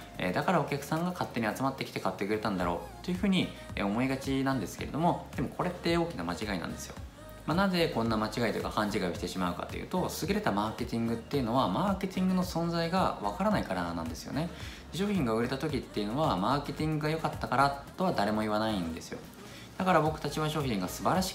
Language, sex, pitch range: Japanese, male, 100-160 Hz